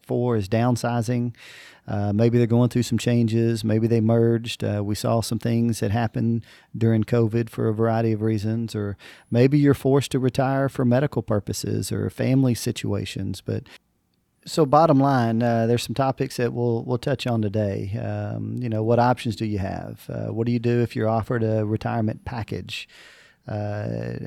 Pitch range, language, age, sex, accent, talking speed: 110-125 Hz, English, 40-59, male, American, 180 wpm